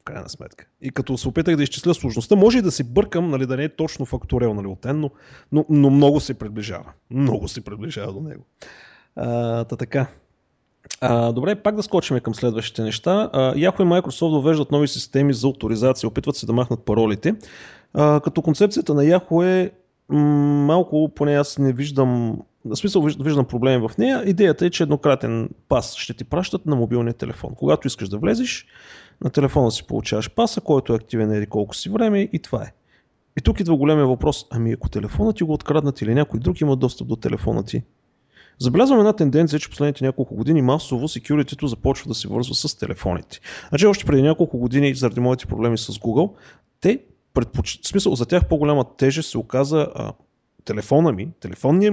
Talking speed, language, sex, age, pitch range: 185 wpm, Bulgarian, male, 30-49, 120-160 Hz